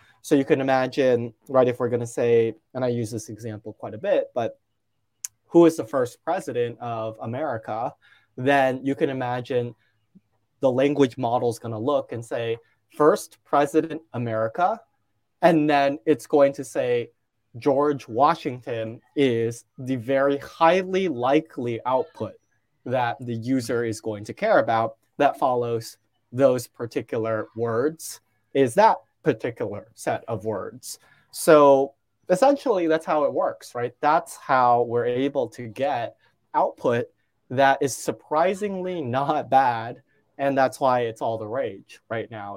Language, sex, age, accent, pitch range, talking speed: English, male, 20-39, American, 115-140 Hz, 145 wpm